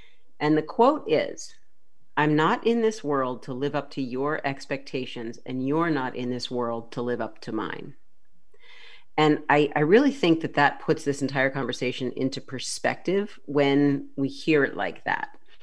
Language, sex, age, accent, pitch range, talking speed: English, female, 40-59, American, 130-155 Hz, 175 wpm